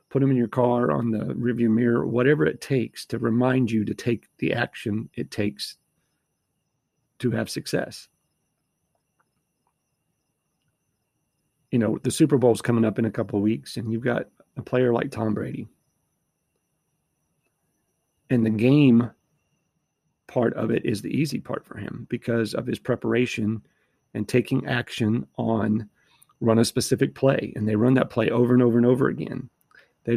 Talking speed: 160 wpm